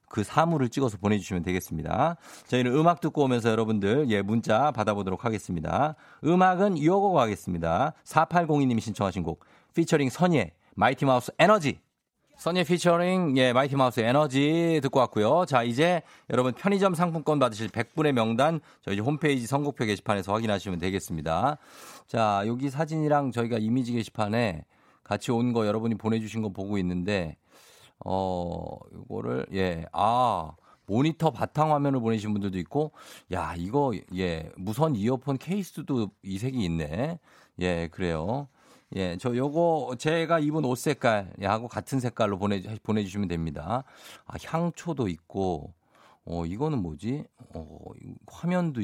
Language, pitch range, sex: Korean, 100-150 Hz, male